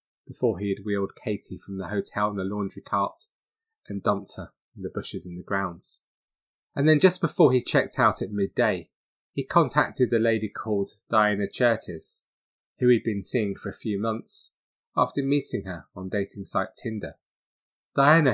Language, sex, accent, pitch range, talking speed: English, male, British, 100-135 Hz, 175 wpm